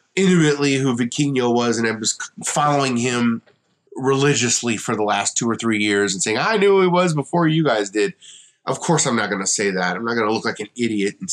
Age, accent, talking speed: 30-49, American, 240 wpm